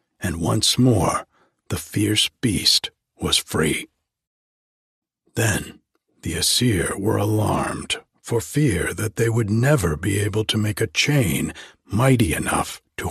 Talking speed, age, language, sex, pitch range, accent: 130 wpm, 60-79, English, male, 105-135 Hz, American